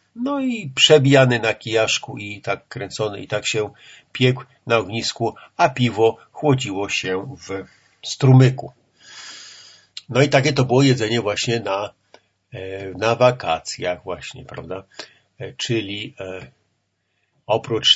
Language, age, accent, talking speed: Polish, 50-69, native, 115 wpm